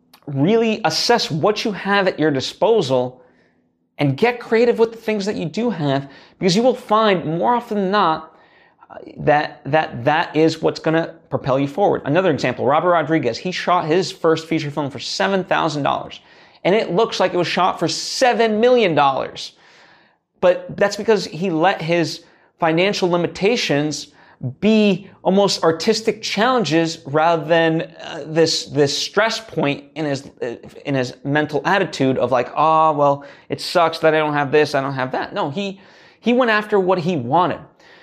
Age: 30-49